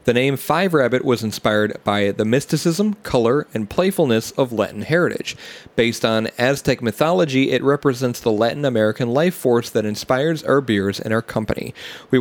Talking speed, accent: 165 wpm, American